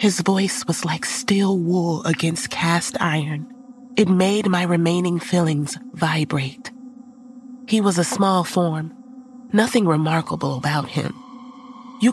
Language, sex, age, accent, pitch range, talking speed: English, female, 30-49, American, 165-225 Hz, 125 wpm